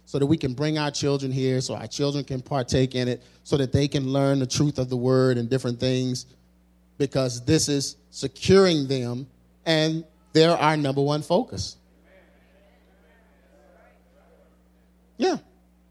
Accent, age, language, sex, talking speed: American, 30-49, English, male, 150 wpm